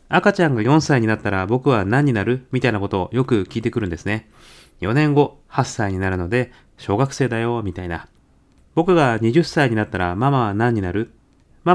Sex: male